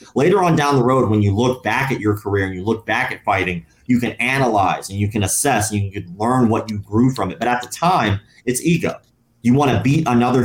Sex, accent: male, American